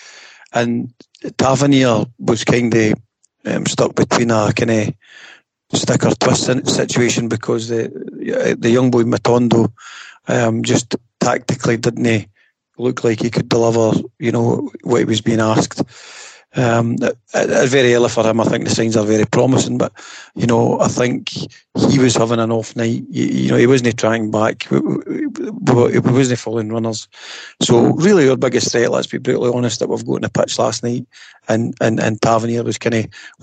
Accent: British